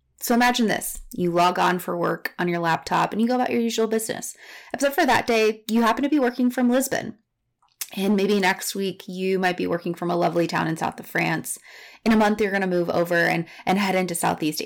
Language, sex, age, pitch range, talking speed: English, female, 20-39, 175-220 Hz, 240 wpm